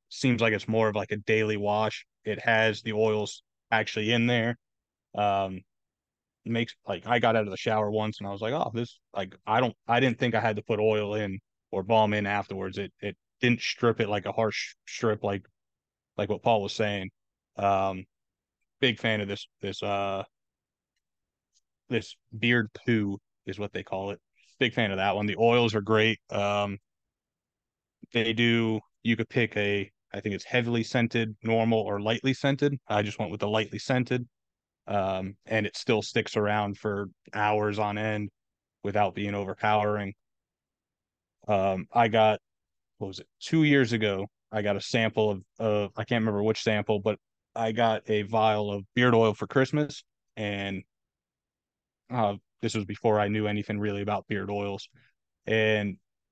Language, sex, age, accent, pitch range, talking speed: English, male, 30-49, American, 100-115 Hz, 180 wpm